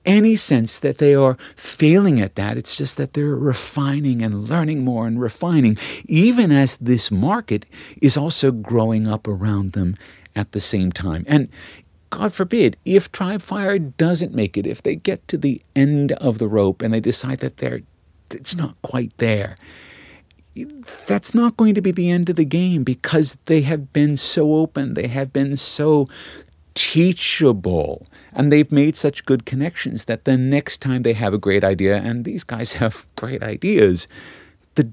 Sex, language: male, English